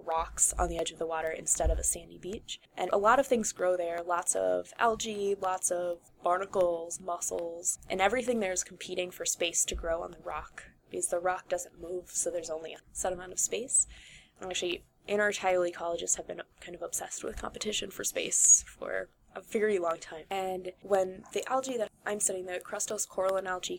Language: English